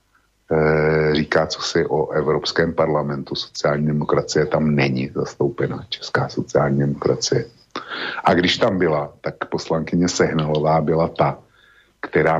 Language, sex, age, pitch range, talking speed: Slovak, male, 50-69, 75-85 Hz, 115 wpm